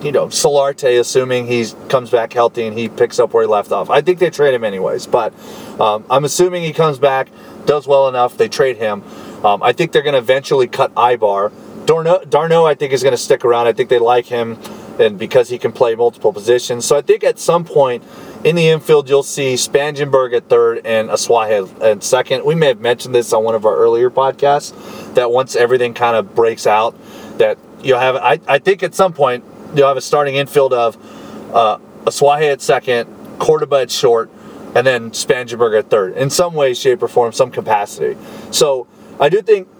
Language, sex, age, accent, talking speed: English, male, 30-49, American, 210 wpm